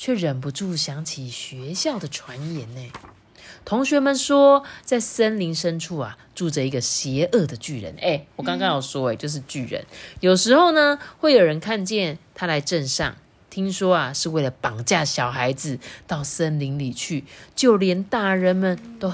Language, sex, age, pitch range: Chinese, female, 30-49, 130-200 Hz